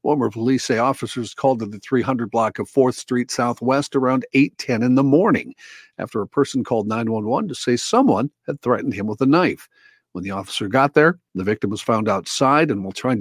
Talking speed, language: 205 wpm, English